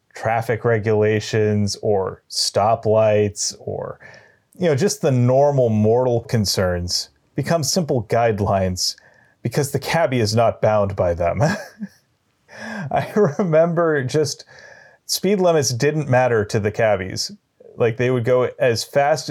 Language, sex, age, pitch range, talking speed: English, male, 30-49, 105-125 Hz, 120 wpm